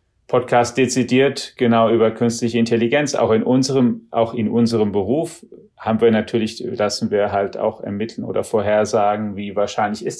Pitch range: 105-120 Hz